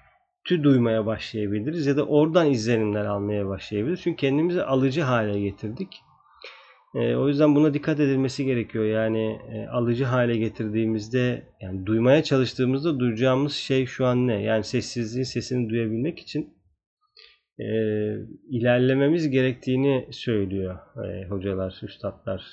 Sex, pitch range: male, 110-140 Hz